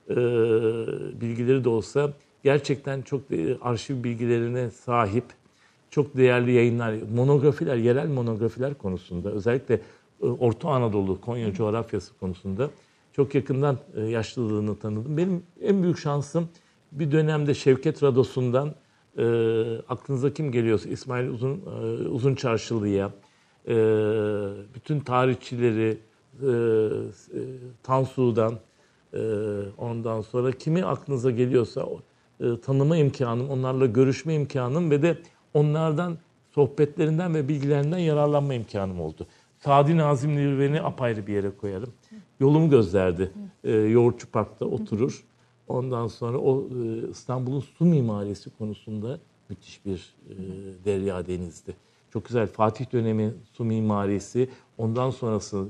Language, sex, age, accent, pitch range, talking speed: Turkish, male, 50-69, native, 110-140 Hz, 115 wpm